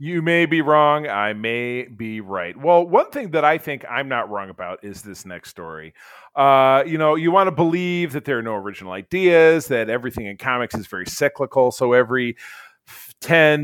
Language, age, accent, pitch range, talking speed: English, 40-59, American, 115-150 Hz, 200 wpm